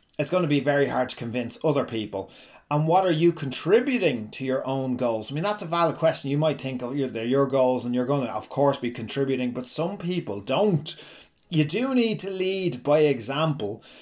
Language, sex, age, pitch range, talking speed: English, male, 30-49, 130-165 Hz, 215 wpm